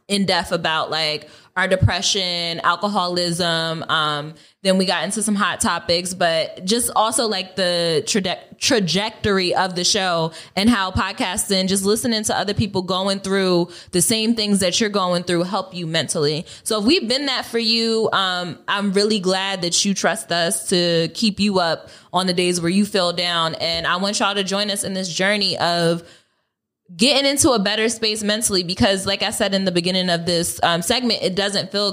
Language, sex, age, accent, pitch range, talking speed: English, female, 20-39, American, 170-210 Hz, 190 wpm